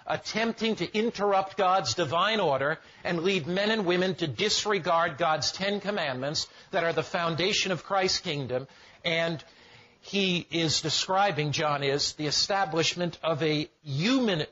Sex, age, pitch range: male, 50-69, 155-195 Hz